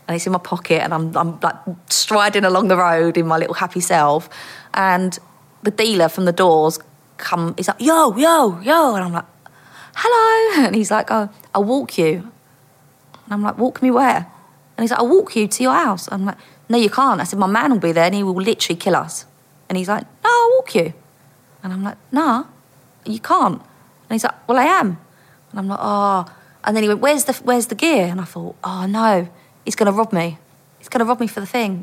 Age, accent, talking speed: 30-49, British, 230 wpm